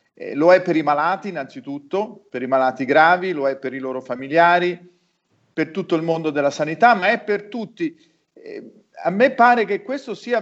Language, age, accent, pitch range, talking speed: Italian, 40-59, native, 160-205 Hz, 195 wpm